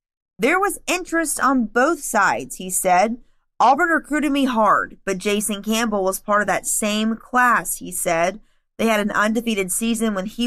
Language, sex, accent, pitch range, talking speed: English, female, American, 195-250 Hz, 170 wpm